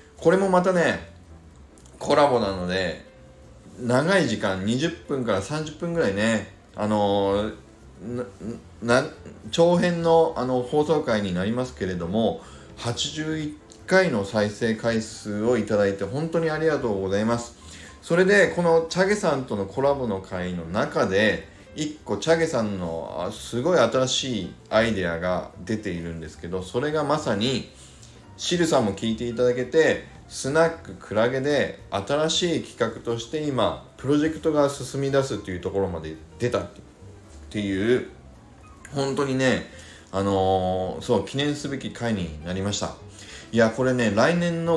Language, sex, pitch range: Japanese, male, 95-145 Hz